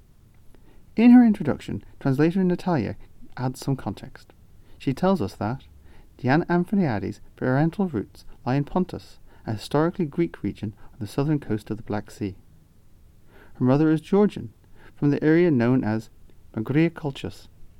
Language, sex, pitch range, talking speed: English, male, 100-145 Hz, 140 wpm